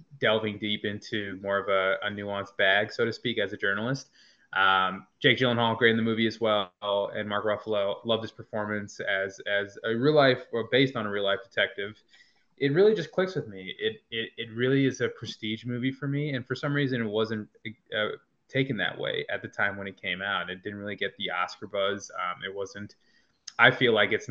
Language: English